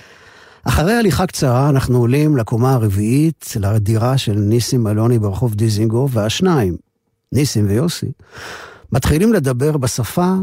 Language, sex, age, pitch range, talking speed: Hebrew, male, 50-69, 110-155 Hz, 110 wpm